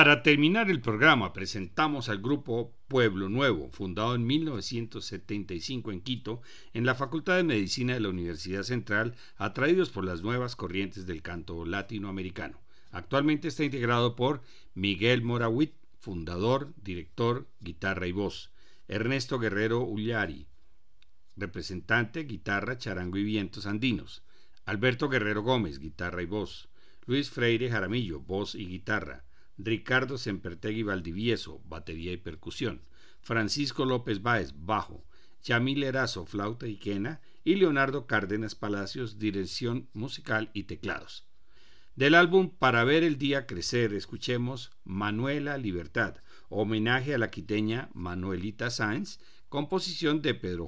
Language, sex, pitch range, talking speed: Spanish, male, 95-130 Hz, 125 wpm